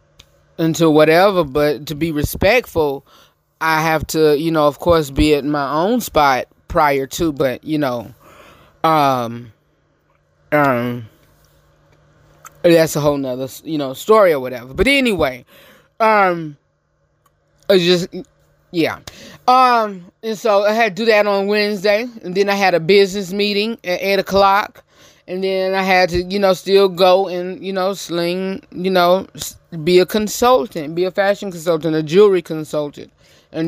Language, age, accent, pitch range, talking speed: English, 20-39, American, 145-190 Hz, 155 wpm